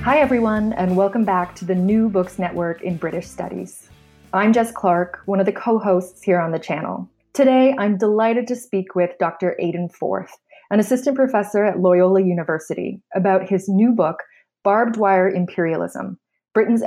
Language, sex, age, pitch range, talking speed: English, female, 20-39, 175-220 Hz, 165 wpm